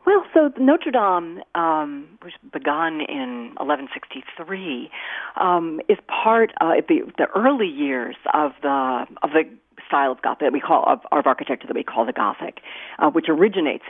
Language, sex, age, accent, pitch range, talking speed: English, female, 40-59, American, 145-215 Hz, 170 wpm